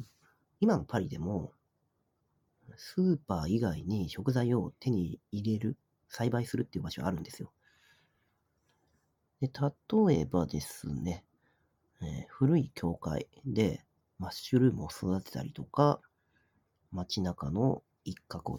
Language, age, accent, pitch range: Japanese, 40-59, native, 90-140 Hz